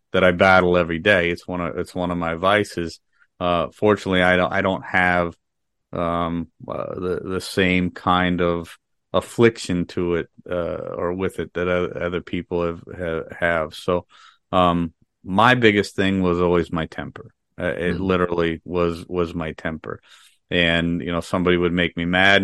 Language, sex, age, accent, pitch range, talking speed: English, male, 30-49, American, 85-95 Hz, 165 wpm